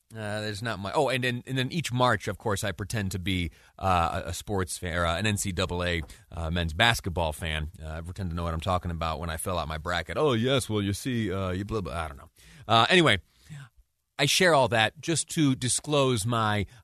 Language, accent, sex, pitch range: English, American, male, 95-150 Hz